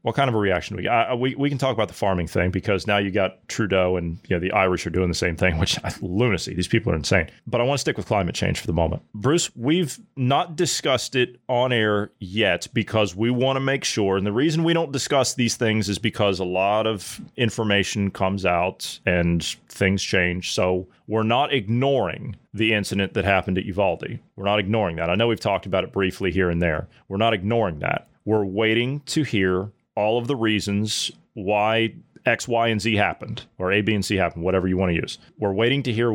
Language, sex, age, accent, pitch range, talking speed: English, male, 30-49, American, 95-115 Hz, 230 wpm